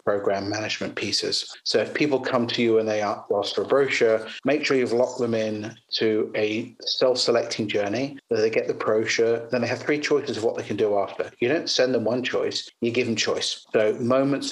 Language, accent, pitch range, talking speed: English, British, 105-135 Hz, 225 wpm